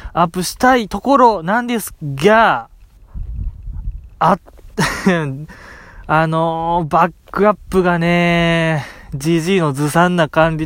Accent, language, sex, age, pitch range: native, Japanese, male, 20-39, 125-180 Hz